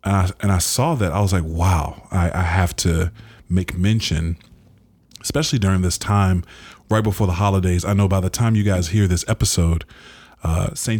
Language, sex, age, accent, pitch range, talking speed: English, male, 30-49, American, 85-105 Hz, 195 wpm